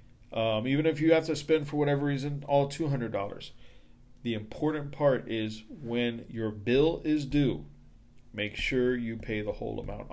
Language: English